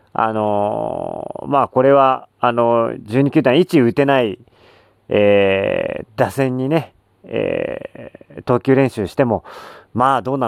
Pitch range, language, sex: 105-150 Hz, Japanese, male